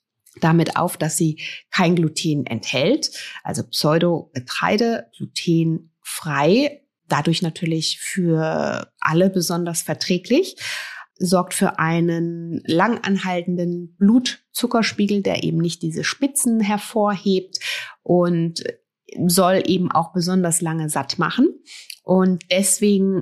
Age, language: 30-49, German